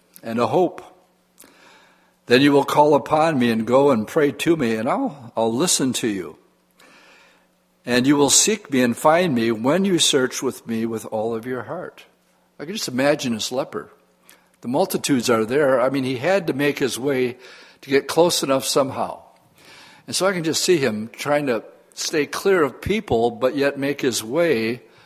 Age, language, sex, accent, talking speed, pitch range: 60-79, English, male, American, 190 wpm, 120-155 Hz